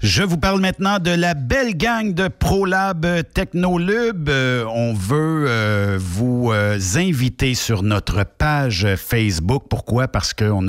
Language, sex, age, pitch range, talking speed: French, male, 60-79, 95-120 Hz, 140 wpm